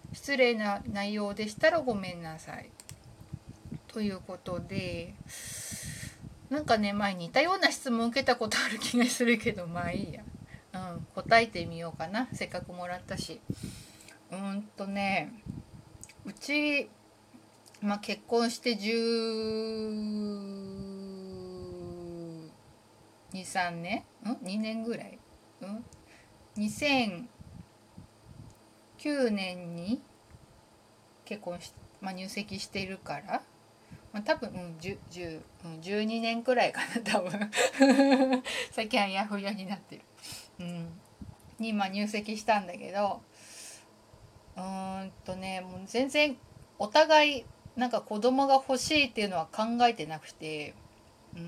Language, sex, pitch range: Japanese, female, 170-235 Hz